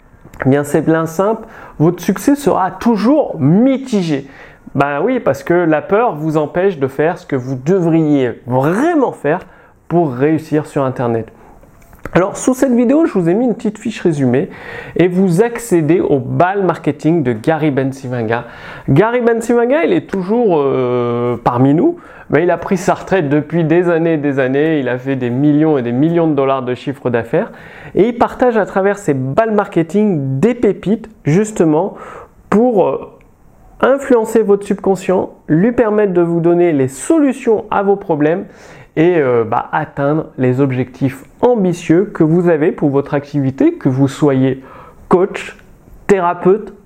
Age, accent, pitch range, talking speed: 30-49, French, 140-205 Hz, 165 wpm